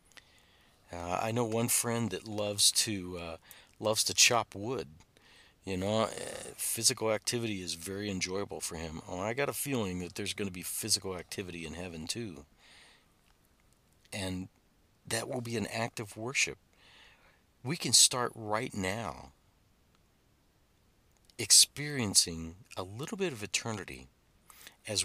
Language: English